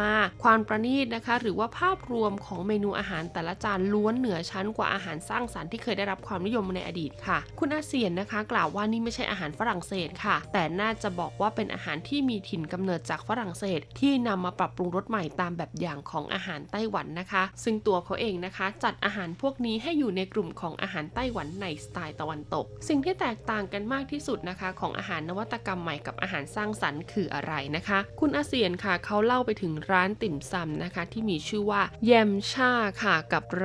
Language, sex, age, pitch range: Thai, female, 20-39, 180-220 Hz